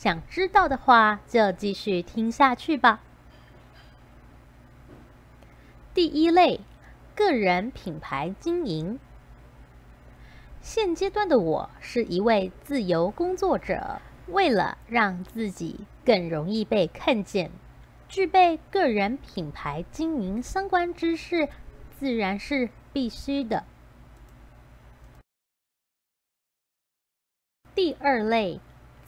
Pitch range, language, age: 180-285 Hz, Chinese, 30-49